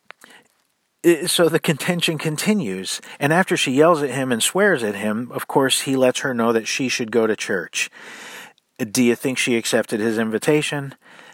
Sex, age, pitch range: male, 50-69, 125-150 Hz